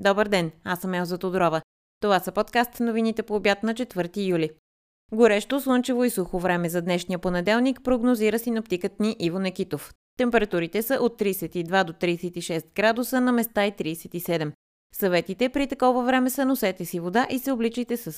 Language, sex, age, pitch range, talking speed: Bulgarian, female, 20-39, 175-230 Hz, 170 wpm